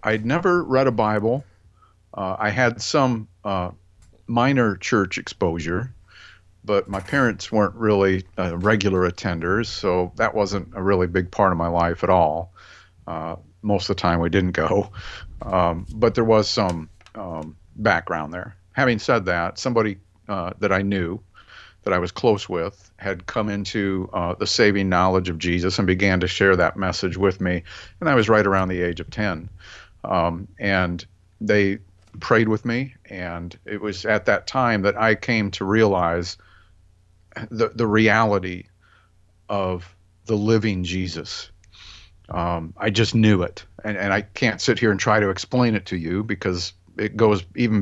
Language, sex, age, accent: English, male, 50-69, American